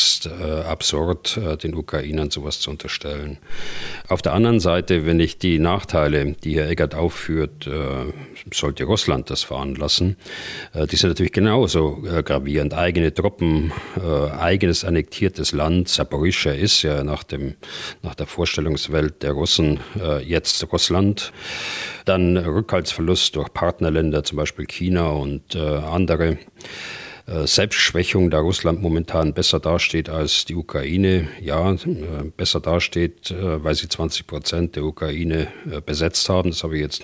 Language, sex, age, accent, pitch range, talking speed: German, male, 40-59, German, 75-95 Hz, 125 wpm